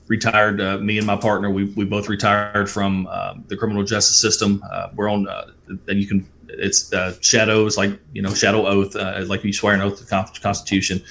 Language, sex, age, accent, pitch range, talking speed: English, male, 30-49, American, 95-115 Hz, 215 wpm